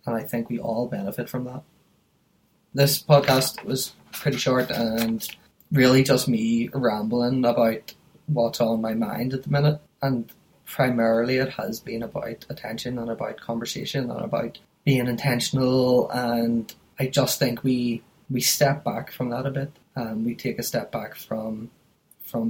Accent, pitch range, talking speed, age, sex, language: Irish, 115-140 Hz, 160 wpm, 20-39, male, English